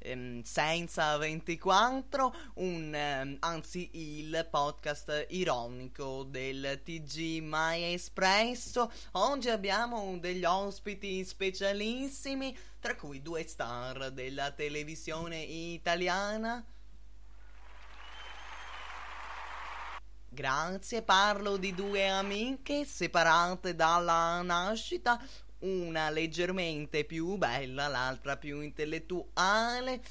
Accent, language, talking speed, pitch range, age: native, Italian, 75 wpm, 145-190 Hz, 20-39